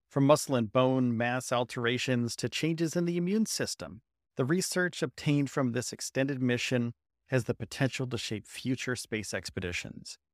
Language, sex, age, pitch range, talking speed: English, male, 40-59, 120-150 Hz, 155 wpm